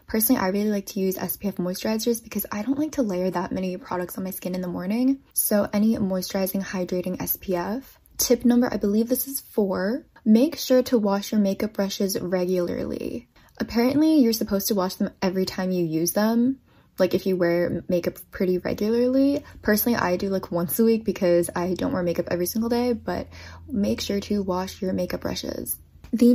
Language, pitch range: English, 185-230 Hz